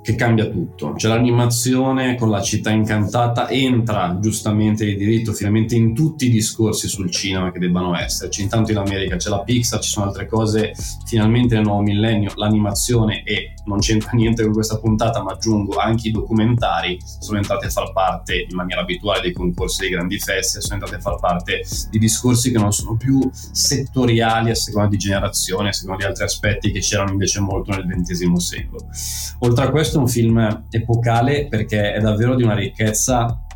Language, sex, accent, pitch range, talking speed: Italian, male, native, 100-115 Hz, 185 wpm